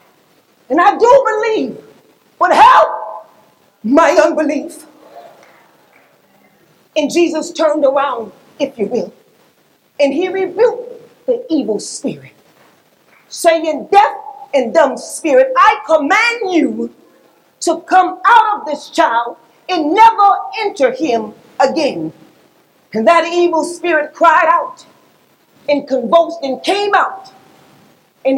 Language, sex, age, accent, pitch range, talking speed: English, female, 40-59, American, 245-365 Hz, 110 wpm